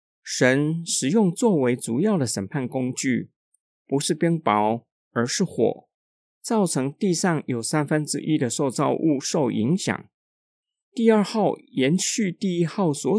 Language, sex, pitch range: Chinese, male, 125-185 Hz